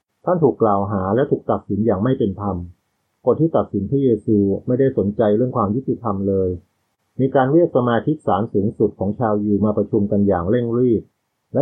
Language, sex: Thai, male